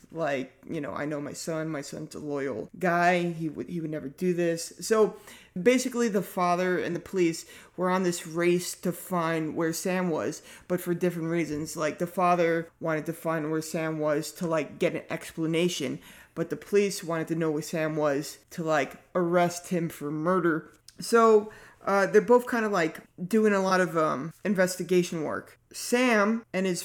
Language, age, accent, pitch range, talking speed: English, 30-49, American, 165-195 Hz, 190 wpm